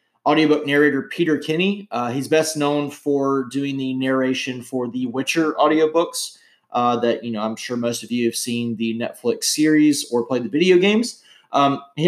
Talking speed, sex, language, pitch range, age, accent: 185 wpm, male, English, 130-155 Hz, 30-49, American